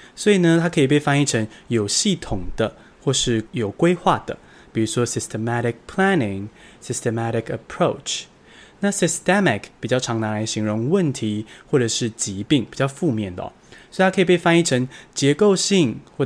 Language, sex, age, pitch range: Chinese, male, 20-39, 110-170 Hz